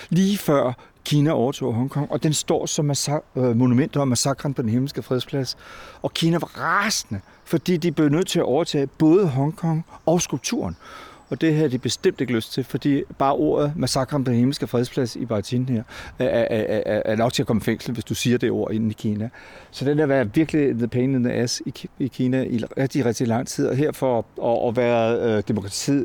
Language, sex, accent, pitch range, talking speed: Danish, male, native, 110-140 Hz, 210 wpm